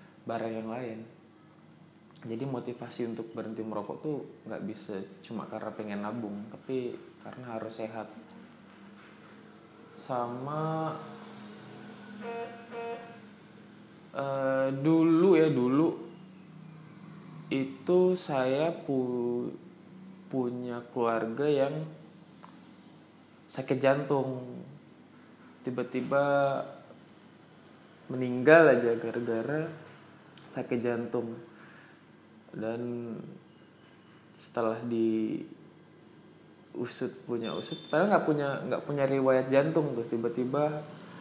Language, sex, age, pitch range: Indonesian, male, 20-39, 120-160 Hz